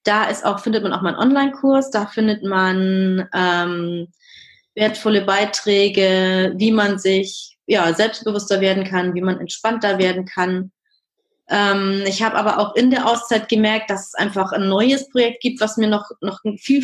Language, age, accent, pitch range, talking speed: German, 20-39, German, 185-220 Hz, 170 wpm